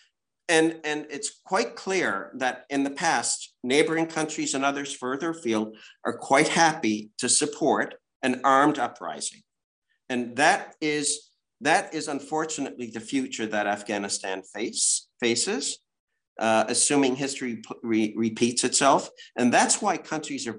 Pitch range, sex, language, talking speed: 120-155 Hz, male, English, 135 wpm